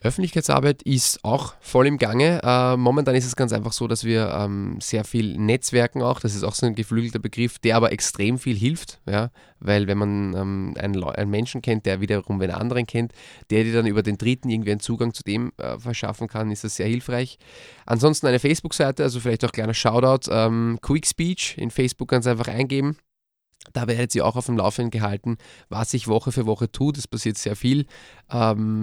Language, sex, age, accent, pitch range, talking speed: German, male, 20-39, German, 105-125 Hz, 205 wpm